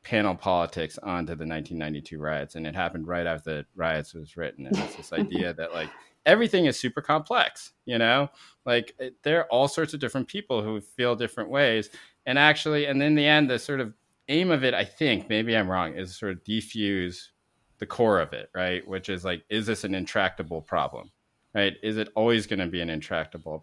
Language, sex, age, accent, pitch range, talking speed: English, male, 30-49, American, 80-115 Hz, 210 wpm